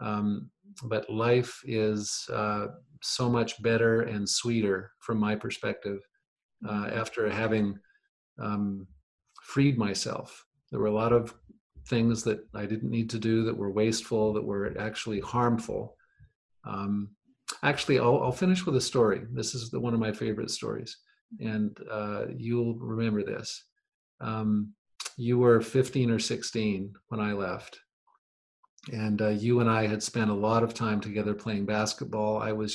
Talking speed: 155 wpm